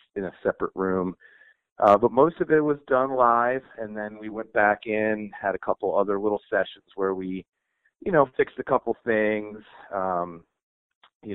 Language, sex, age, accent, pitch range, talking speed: English, male, 30-49, American, 100-110 Hz, 180 wpm